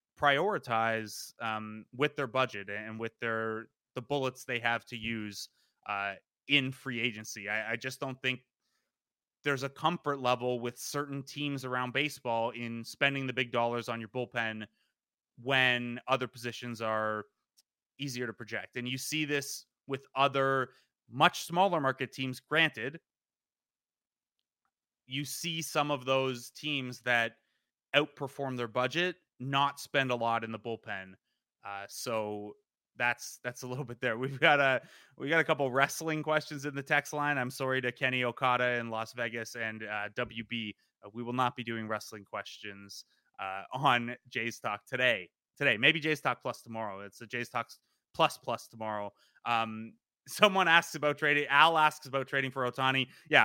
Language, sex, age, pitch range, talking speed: English, male, 20-39, 115-145 Hz, 165 wpm